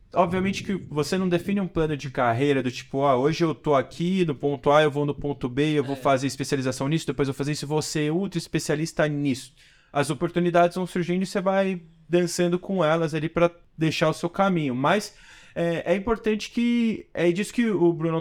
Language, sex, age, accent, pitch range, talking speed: Portuguese, male, 20-39, Brazilian, 140-175 Hz, 220 wpm